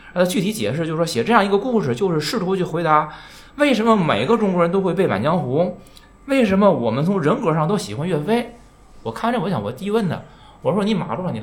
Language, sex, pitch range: Chinese, male, 145-210 Hz